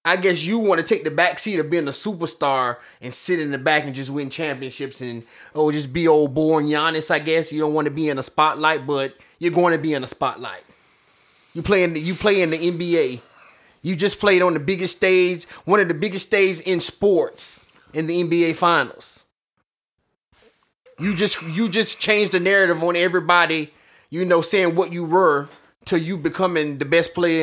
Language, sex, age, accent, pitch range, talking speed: English, male, 30-49, American, 155-190 Hz, 205 wpm